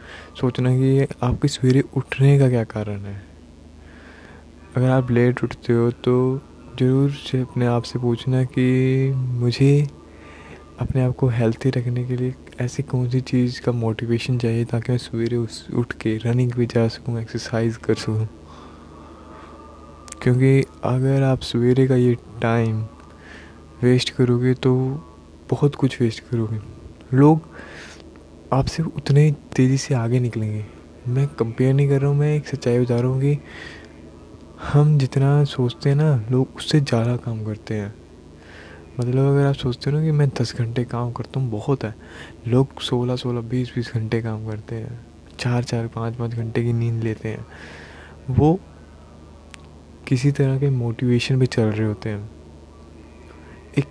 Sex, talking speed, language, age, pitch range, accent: male, 155 wpm, Hindi, 20-39, 105-130 Hz, native